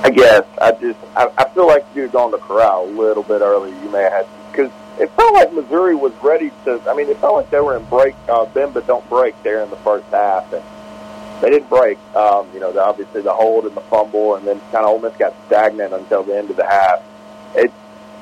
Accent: American